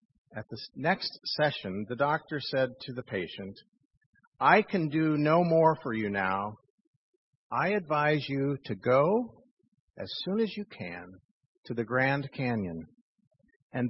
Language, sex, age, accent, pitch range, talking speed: English, male, 50-69, American, 125-175 Hz, 145 wpm